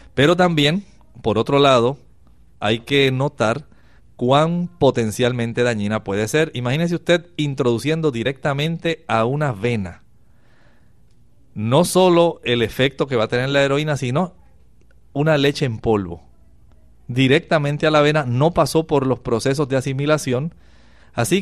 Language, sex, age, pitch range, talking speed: Spanish, male, 40-59, 115-150 Hz, 130 wpm